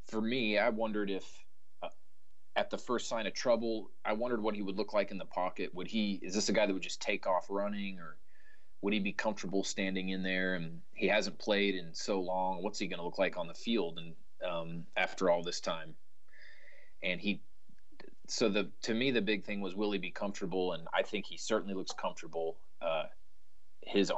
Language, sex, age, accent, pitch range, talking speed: English, male, 30-49, American, 90-100 Hz, 215 wpm